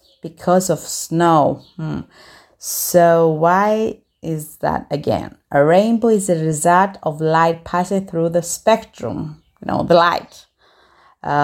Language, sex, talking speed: English, female, 130 wpm